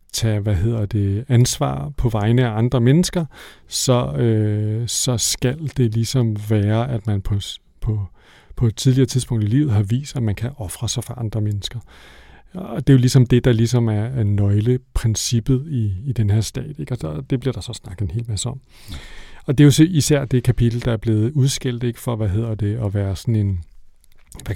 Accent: native